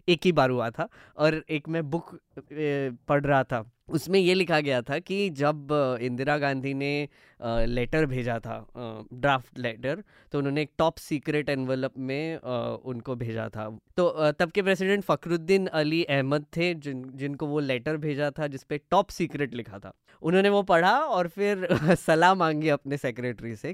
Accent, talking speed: native, 165 wpm